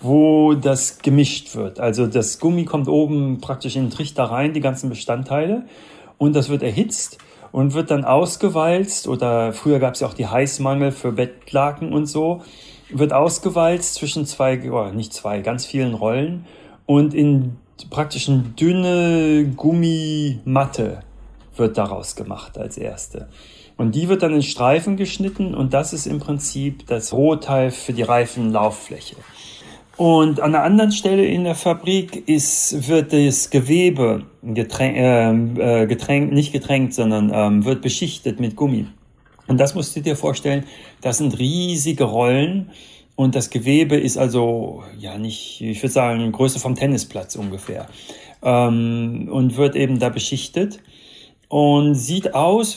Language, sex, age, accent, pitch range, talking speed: German, male, 40-59, German, 125-155 Hz, 150 wpm